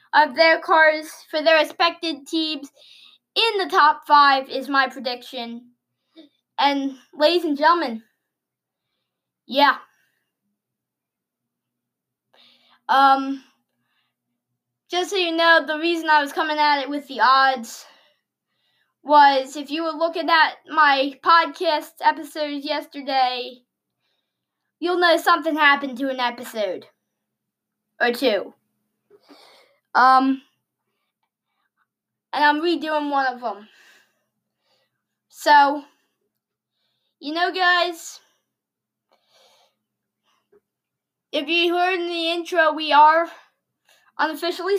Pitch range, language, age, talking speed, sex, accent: 270-330 Hz, English, 10-29, 100 wpm, female, American